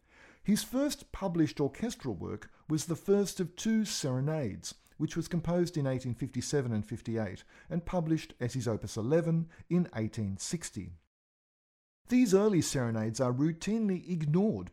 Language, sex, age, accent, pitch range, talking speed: English, male, 50-69, Australian, 115-170 Hz, 130 wpm